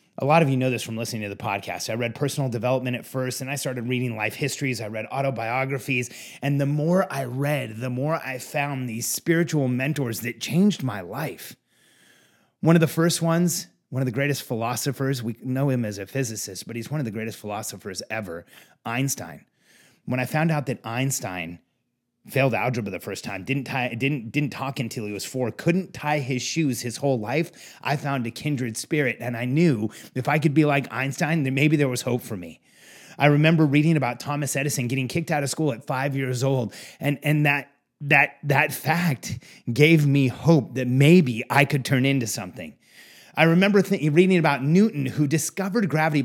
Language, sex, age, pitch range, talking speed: English, male, 30-49, 120-150 Hz, 200 wpm